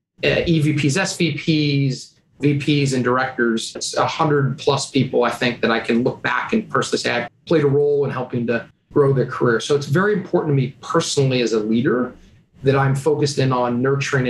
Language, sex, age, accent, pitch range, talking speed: English, male, 30-49, American, 130-160 Hz, 195 wpm